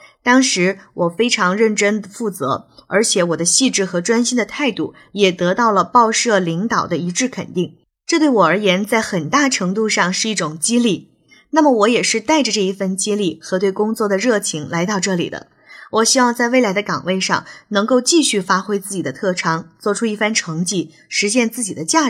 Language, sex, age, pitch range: Chinese, female, 20-39, 180-235 Hz